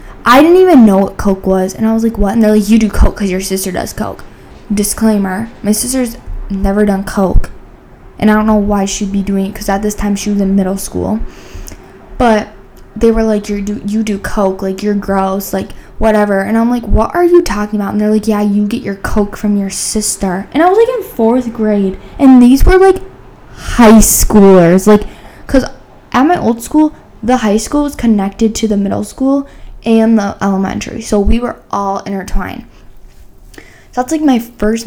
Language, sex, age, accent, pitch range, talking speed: English, female, 10-29, American, 195-225 Hz, 210 wpm